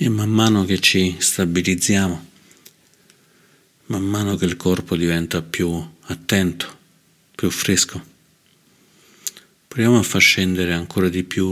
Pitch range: 90-105 Hz